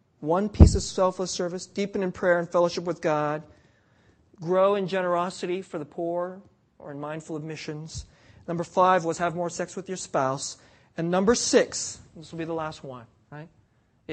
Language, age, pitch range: English, 40-59, 160-250 Hz